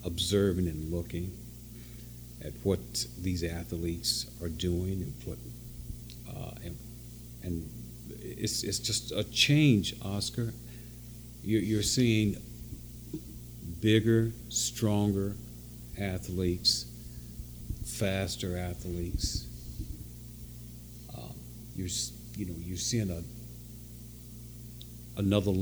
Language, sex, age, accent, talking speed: English, male, 50-69, American, 85 wpm